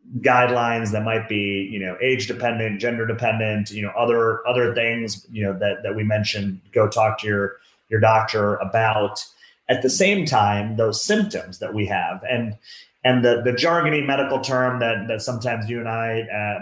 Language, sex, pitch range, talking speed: English, male, 105-125 Hz, 185 wpm